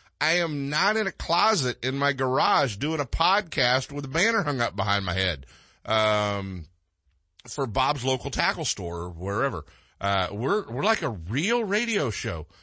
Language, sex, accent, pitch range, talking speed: English, male, American, 90-140 Hz, 170 wpm